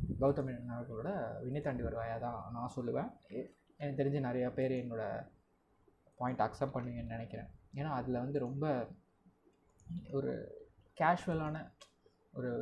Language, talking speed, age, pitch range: Tamil, 105 wpm, 20-39, 120-150 Hz